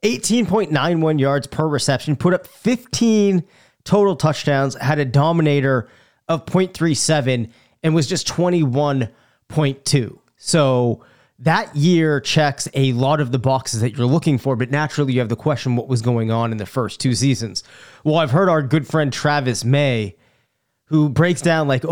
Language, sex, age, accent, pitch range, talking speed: English, male, 30-49, American, 125-155 Hz, 160 wpm